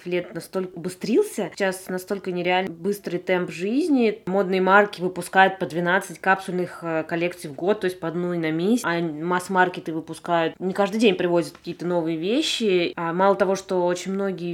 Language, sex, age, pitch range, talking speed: Russian, female, 20-39, 170-200 Hz, 160 wpm